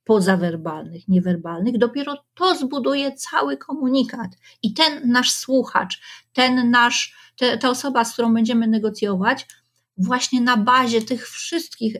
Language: Polish